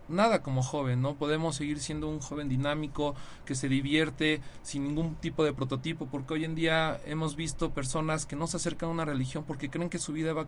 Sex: male